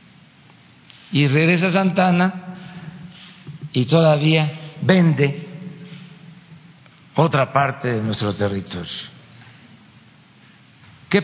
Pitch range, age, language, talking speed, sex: 140-180 Hz, 60-79, Spanish, 70 wpm, male